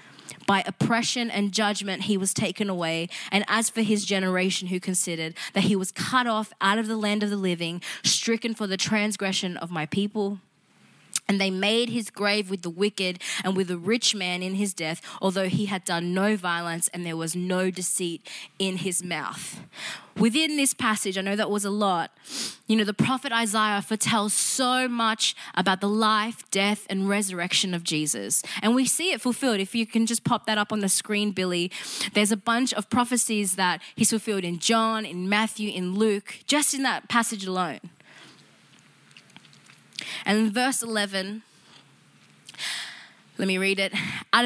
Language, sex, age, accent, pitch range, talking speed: English, female, 20-39, Australian, 185-220 Hz, 180 wpm